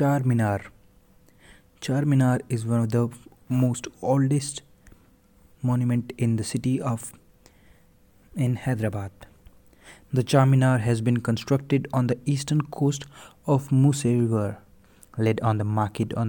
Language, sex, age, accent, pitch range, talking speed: English, male, 20-39, Indian, 110-130 Hz, 120 wpm